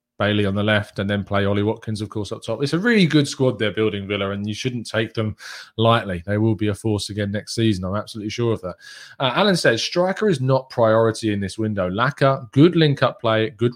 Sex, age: male, 20-39